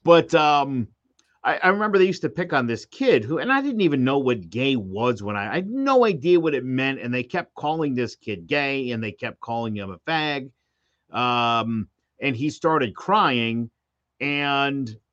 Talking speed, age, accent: 200 wpm, 50-69, American